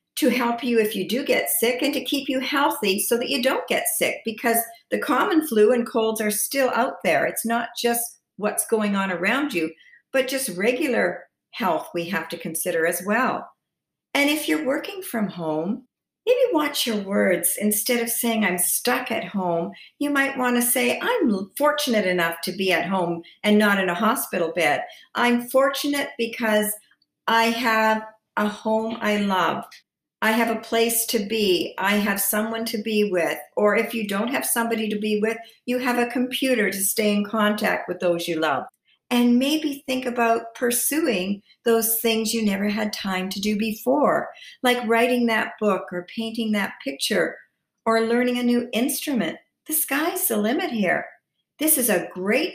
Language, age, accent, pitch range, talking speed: English, 50-69, American, 200-245 Hz, 180 wpm